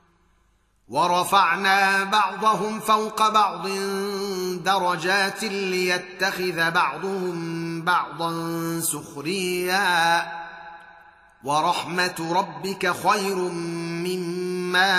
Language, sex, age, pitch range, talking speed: Arabic, male, 30-49, 165-195 Hz, 50 wpm